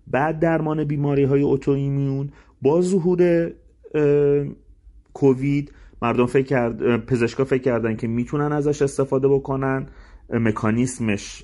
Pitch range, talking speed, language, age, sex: 125-180 Hz, 100 wpm, Persian, 30-49, male